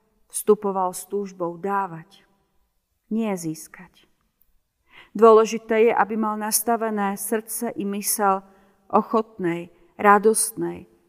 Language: Slovak